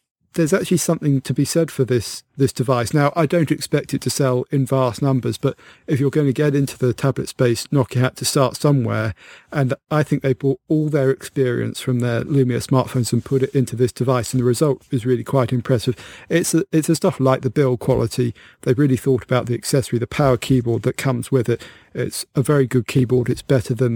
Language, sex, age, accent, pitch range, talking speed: English, male, 40-59, British, 125-140 Hz, 225 wpm